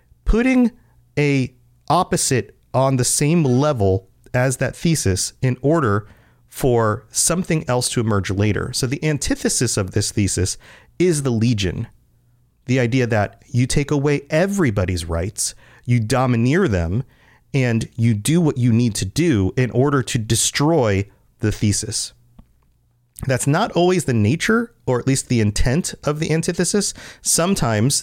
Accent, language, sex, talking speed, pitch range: American, English, male, 140 wpm, 110-145 Hz